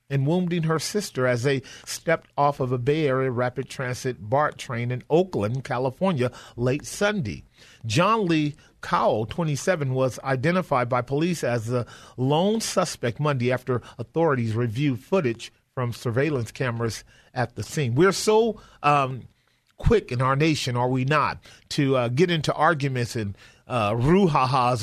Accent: American